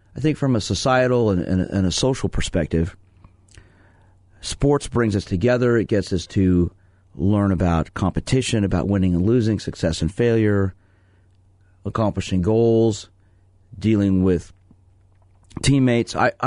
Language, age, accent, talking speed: English, 40-59, American, 120 wpm